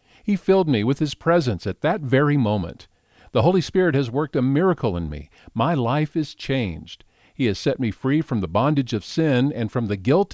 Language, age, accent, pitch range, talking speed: English, 50-69, American, 105-155 Hz, 215 wpm